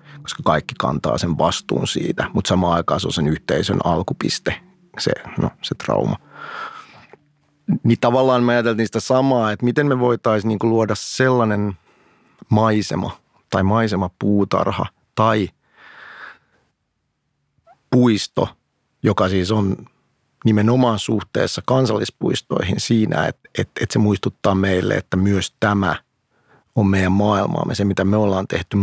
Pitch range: 95-120 Hz